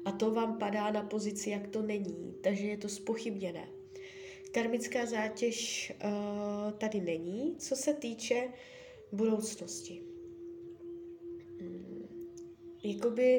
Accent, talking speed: native, 100 wpm